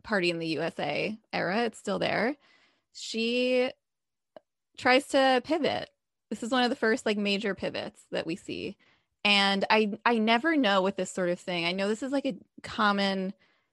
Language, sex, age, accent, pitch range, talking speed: English, female, 20-39, American, 175-220 Hz, 180 wpm